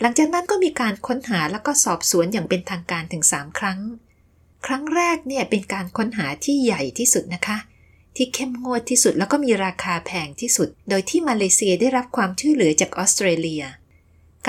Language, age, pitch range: Thai, 20-39, 180-250 Hz